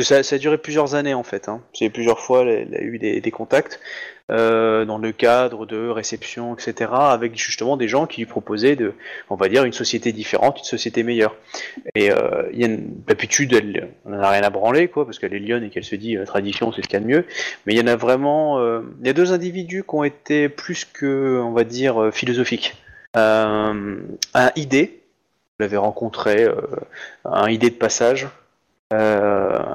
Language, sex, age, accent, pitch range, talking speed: French, male, 20-39, French, 110-130 Hz, 210 wpm